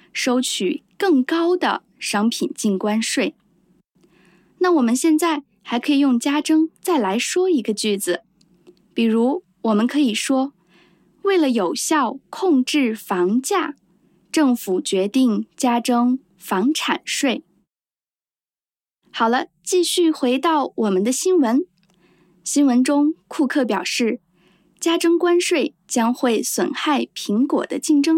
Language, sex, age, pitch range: English, female, 20-39, 220-325 Hz